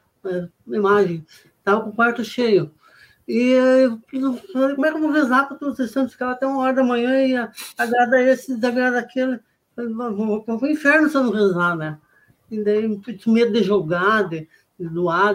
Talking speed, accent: 200 wpm, Brazilian